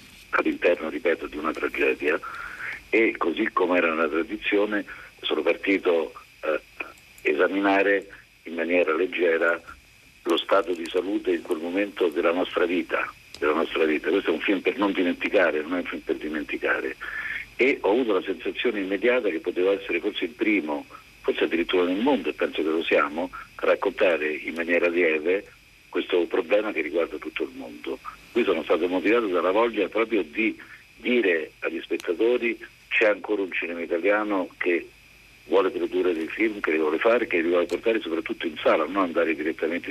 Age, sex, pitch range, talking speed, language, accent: 50-69, male, 325-445 Hz, 170 wpm, Italian, native